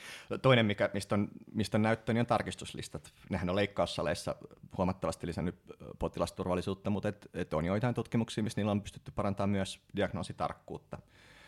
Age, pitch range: 30-49, 85-105 Hz